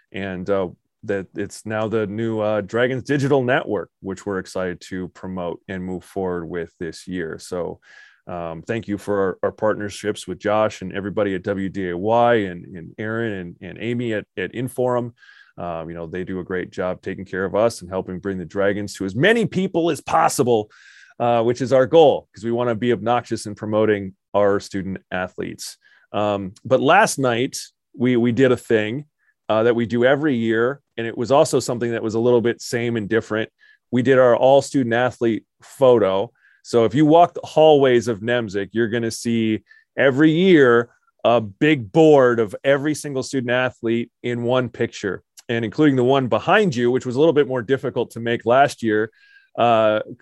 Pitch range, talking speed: 100-130 Hz, 195 wpm